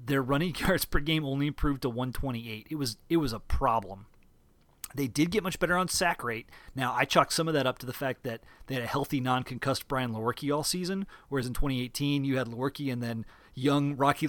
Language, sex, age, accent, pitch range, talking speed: English, male, 30-49, American, 125-165 Hz, 225 wpm